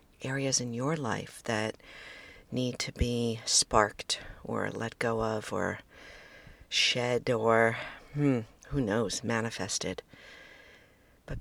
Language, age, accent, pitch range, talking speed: English, 50-69, American, 110-135 Hz, 110 wpm